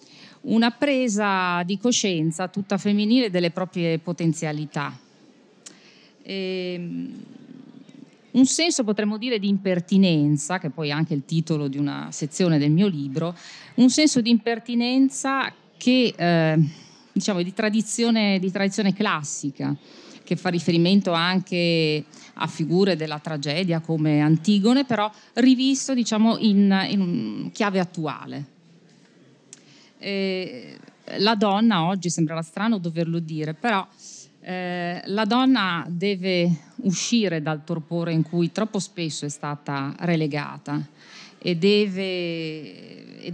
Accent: native